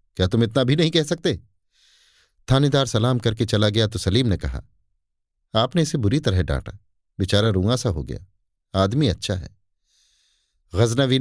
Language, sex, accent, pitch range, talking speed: Hindi, male, native, 95-125 Hz, 155 wpm